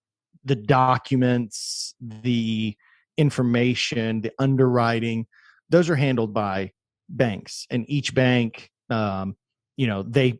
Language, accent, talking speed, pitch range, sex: English, American, 105 wpm, 105-125 Hz, male